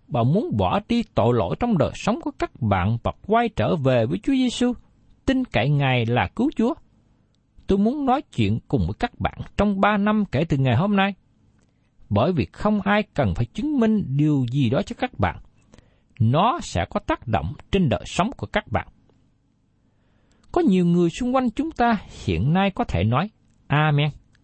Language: Vietnamese